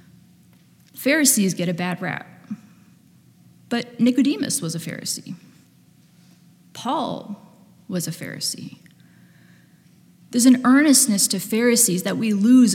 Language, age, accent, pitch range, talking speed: English, 20-39, American, 185-240 Hz, 105 wpm